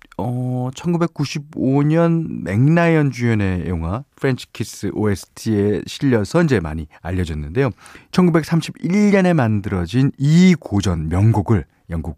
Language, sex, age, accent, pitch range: Korean, male, 40-59, native, 95-150 Hz